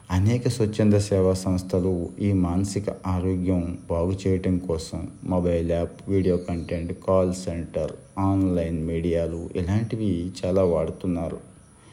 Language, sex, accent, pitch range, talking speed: Telugu, male, native, 90-100 Hz, 100 wpm